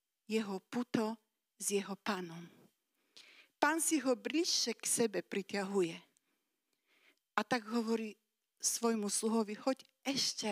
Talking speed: 110 wpm